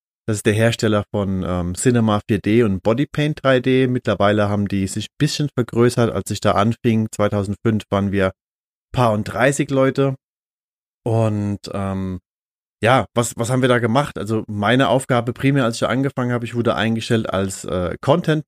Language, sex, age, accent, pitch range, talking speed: German, male, 30-49, German, 100-125 Hz, 170 wpm